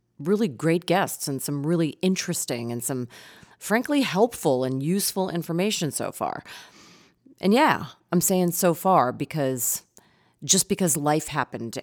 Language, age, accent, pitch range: English, 40-59, American, 130-170 Hz